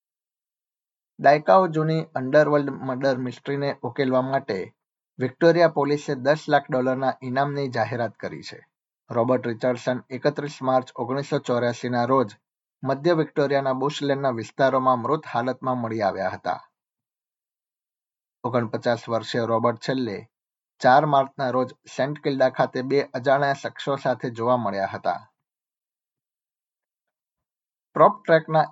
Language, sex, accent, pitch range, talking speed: Gujarati, male, native, 125-140 Hz, 80 wpm